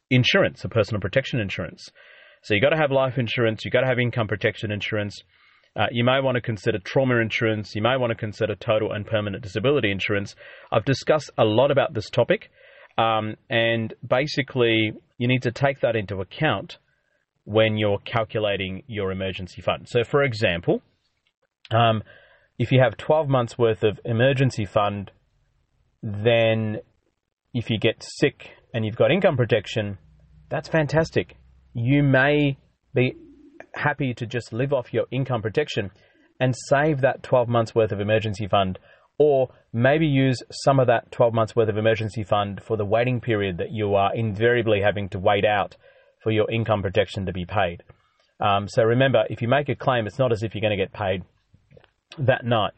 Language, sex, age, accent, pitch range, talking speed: English, male, 30-49, Australian, 105-125 Hz, 175 wpm